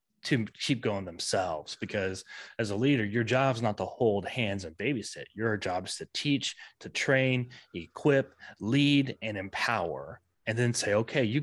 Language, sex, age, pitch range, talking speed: English, male, 20-39, 100-125 Hz, 175 wpm